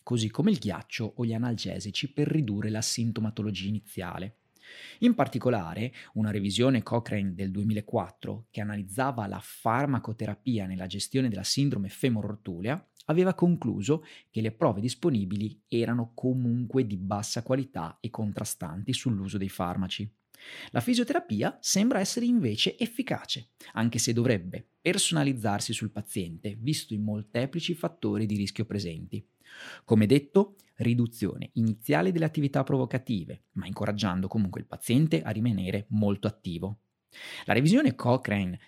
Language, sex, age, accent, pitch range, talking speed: Italian, male, 30-49, native, 105-140 Hz, 125 wpm